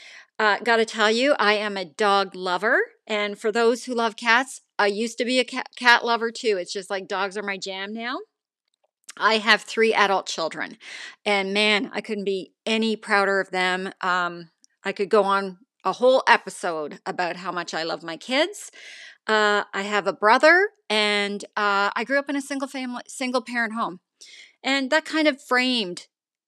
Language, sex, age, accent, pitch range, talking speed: English, female, 40-59, American, 195-235 Hz, 190 wpm